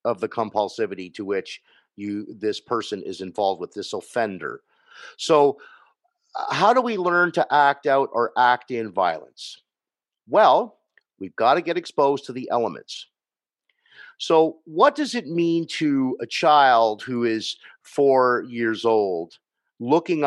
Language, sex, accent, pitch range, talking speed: English, male, American, 120-160 Hz, 140 wpm